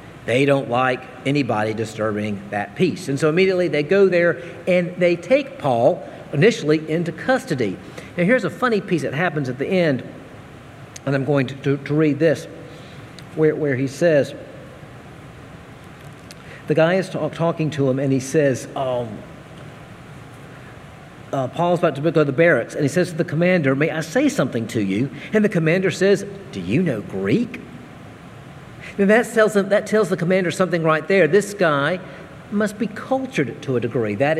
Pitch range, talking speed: 135-180 Hz, 170 wpm